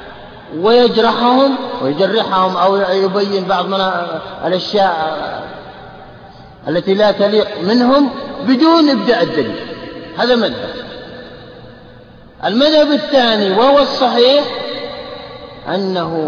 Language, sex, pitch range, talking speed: Arabic, male, 175-275 Hz, 75 wpm